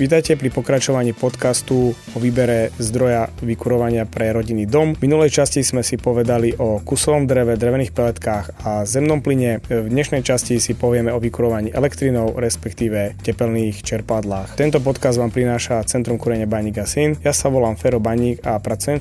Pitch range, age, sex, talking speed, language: 115-140 Hz, 30-49, male, 160 wpm, Slovak